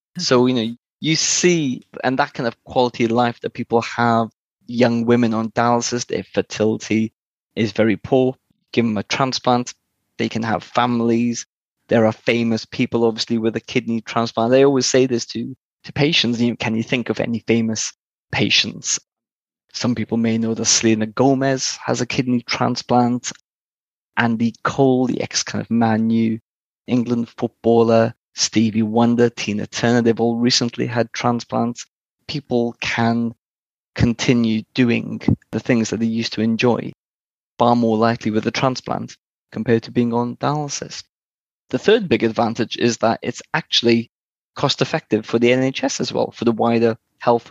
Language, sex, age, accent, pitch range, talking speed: English, male, 20-39, British, 115-125 Hz, 160 wpm